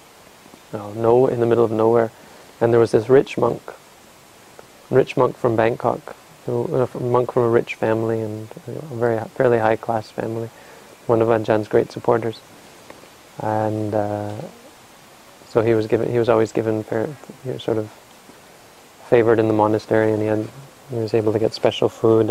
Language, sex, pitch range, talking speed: English, male, 110-120 Hz, 170 wpm